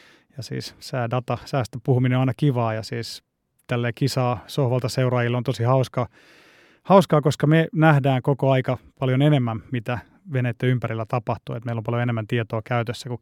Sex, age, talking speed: male, 30-49, 170 wpm